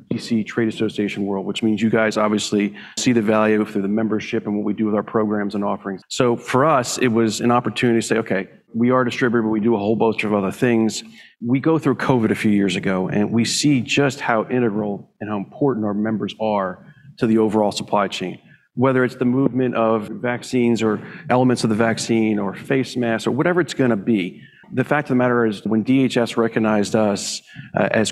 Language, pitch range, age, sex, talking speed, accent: English, 105-125 Hz, 40-59, male, 220 wpm, American